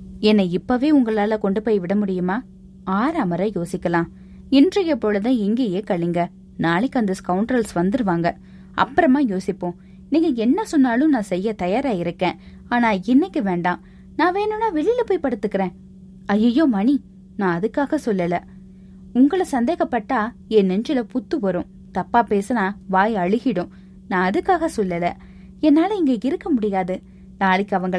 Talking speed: 90 wpm